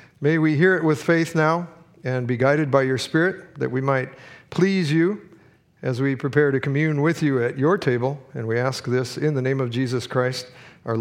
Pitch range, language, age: 135-170 Hz, English, 50-69